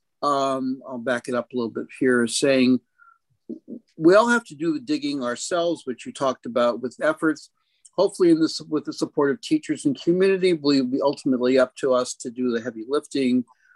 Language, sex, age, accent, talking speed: English, male, 50-69, American, 195 wpm